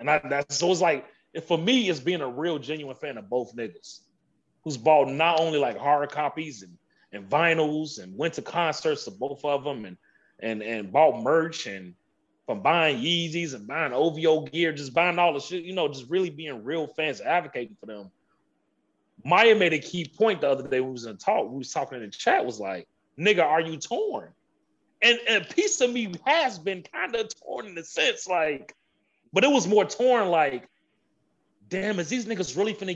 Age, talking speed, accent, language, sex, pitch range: 30-49, 210 wpm, American, English, male, 135-180 Hz